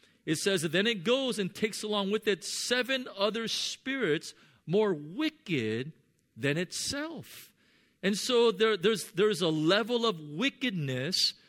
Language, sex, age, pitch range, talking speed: English, male, 50-69, 145-210 Hz, 140 wpm